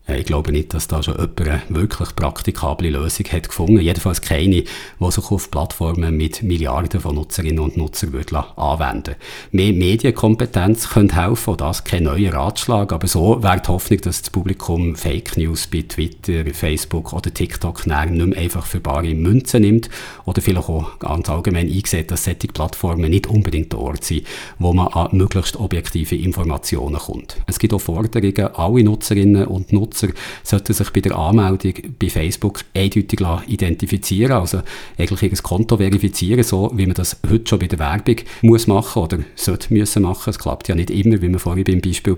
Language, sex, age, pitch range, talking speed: German, male, 50-69, 85-105 Hz, 180 wpm